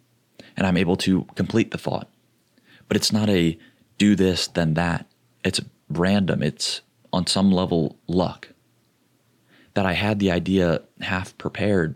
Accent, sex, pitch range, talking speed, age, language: American, male, 80-95 Hz, 145 wpm, 30-49, English